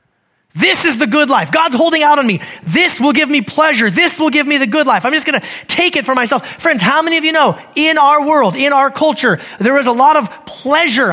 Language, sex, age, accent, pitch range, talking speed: English, male, 30-49, American, 180-275 Hz, 260 wpm